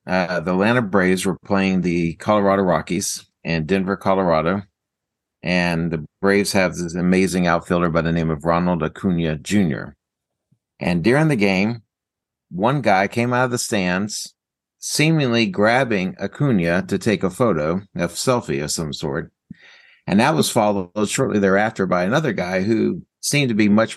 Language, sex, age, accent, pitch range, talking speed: English, male, 50-69, American, 90-110 Hz, 160 wpm